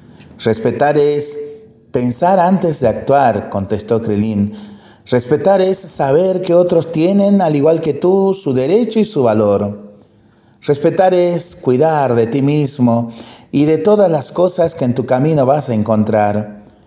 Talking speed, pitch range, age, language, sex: 145 wpm, 110-155 Hz, 40-59, Spanish, male